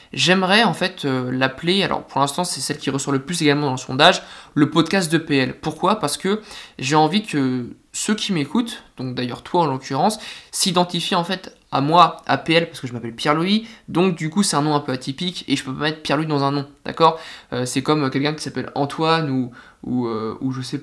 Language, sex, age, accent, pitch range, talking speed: French, male, 20-39, French, 135-170 Hz, 230 wpm